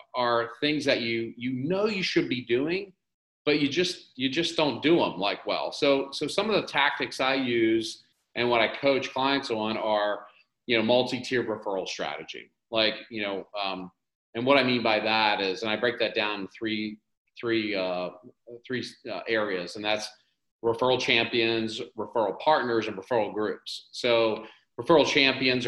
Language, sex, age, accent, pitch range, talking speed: English, male, 40-59, American, 105-130 Hz, 175 wpm